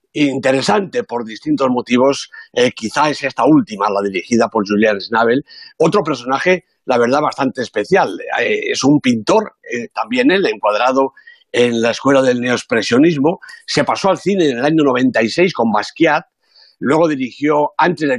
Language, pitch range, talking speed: Spanish, 125-200 Hz, 160 wpm